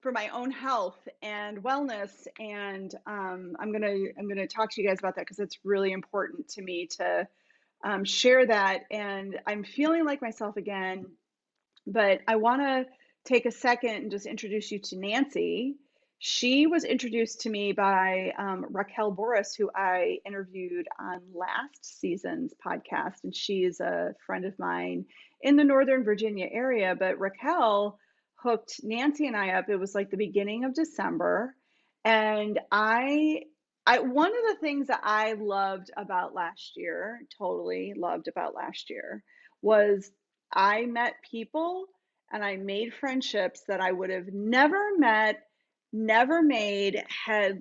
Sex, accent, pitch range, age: female, American, 195-260 Hz, 30-49